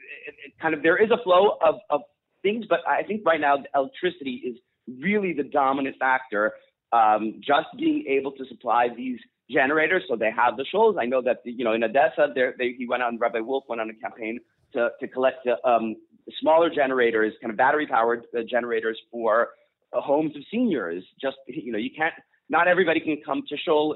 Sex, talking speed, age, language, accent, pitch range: male, 205 wpm, 30-49, English, American, 120-175 Hz